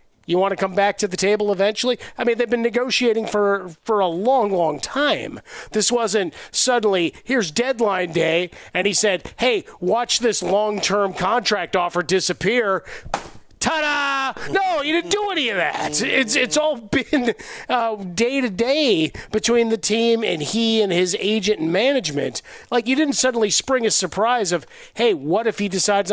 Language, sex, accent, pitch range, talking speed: English, male, American, 180-230 Hz, 170 wpm